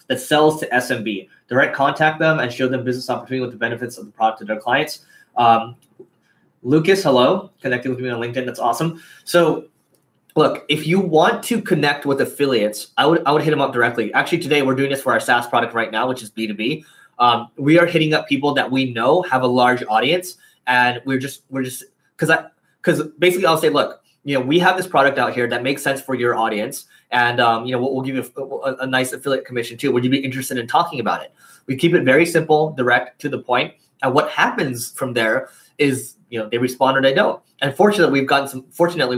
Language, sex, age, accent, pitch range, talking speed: English, male, 20-39, American, 120-145 Hz, 230 wpm